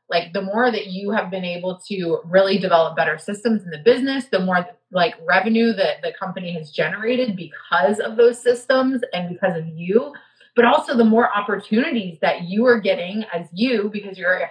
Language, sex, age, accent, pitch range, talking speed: English, female, 30-49, American, 185-230 Hz, 195 wpm